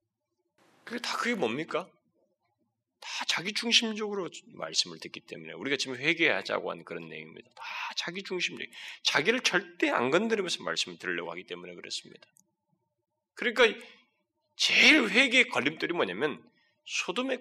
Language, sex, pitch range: Korean, male, 225-305 Hz